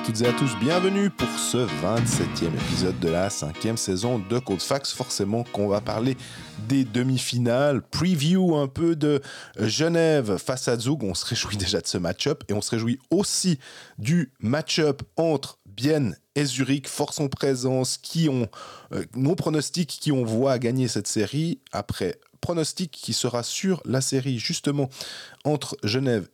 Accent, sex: French, male